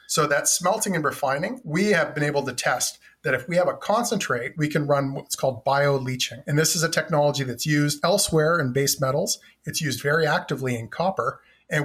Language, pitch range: English, 135-165 Hz